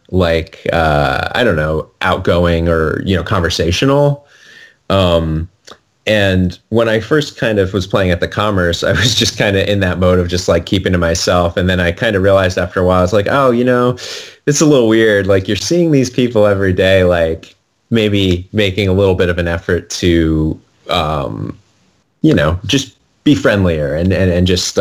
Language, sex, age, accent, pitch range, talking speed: English, male, 30-49, American, 85-105 Hz, 200 wpm